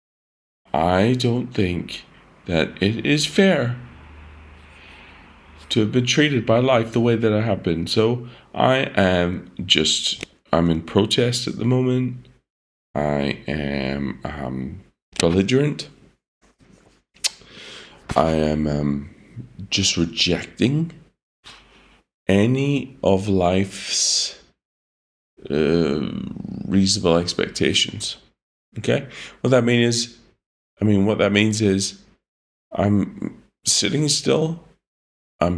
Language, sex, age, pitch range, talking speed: English, male, 40-59, 80-120 Hz, 100 wpm